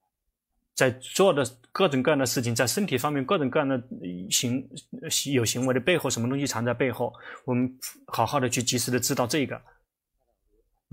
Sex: male